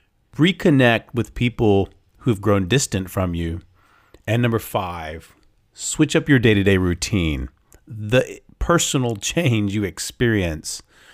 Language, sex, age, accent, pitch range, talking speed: English, male, 40-59, American, 90-115 Hz, 115 wpm